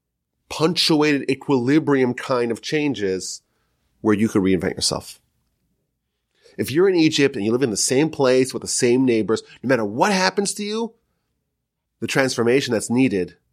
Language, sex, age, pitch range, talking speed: English, male, 30-49, 105-145 Hz, 155 wpm